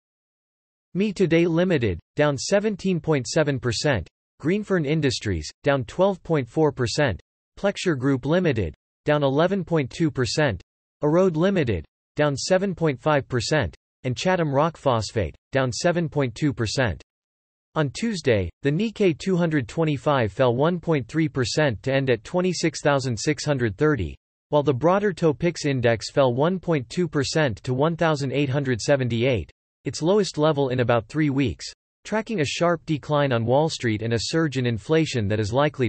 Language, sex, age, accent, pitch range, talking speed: English, male, 40-59, American, 120-160 Hz, 110 wpm